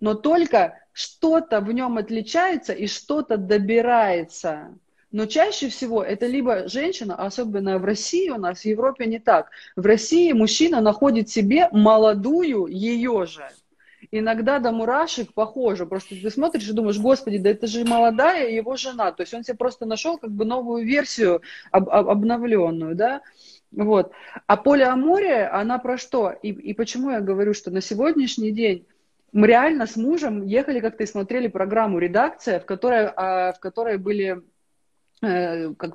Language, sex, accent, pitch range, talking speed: Russian, female, native, 195-250 Hz, 155 wpm